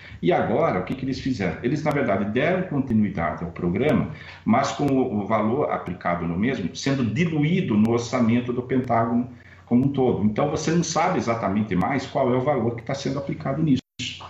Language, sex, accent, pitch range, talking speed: Portuguese, male, Brazilian, 85-120 Hz, 190 wpm